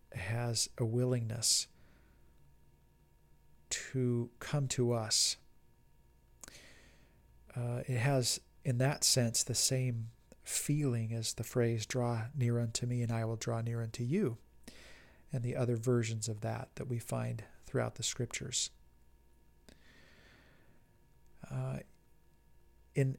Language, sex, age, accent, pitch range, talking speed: English, male, 40-59, American, 115-130 Hz, 115 wpm